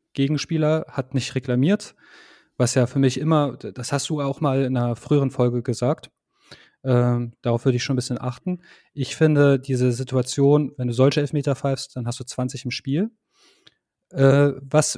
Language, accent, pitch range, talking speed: German, German, 125-155 Hz, 175 wpm